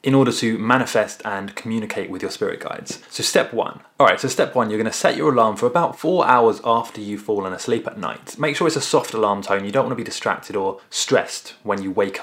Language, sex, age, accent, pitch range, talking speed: English, male, 20-39, British, 100-135 Hz, 245 wpm